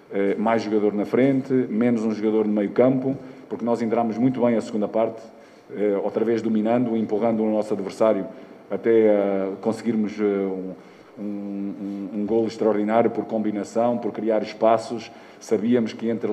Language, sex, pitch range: Portuguese, male, 105-115 Hz